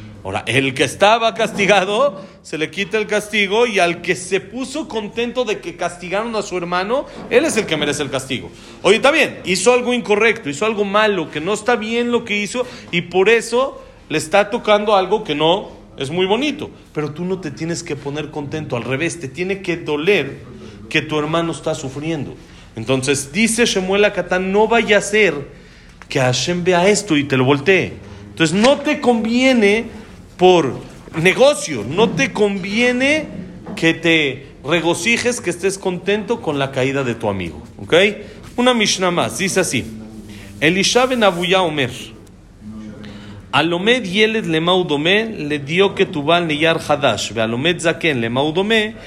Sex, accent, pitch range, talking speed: male, Mexican, 140-210 Hz, 165 wpm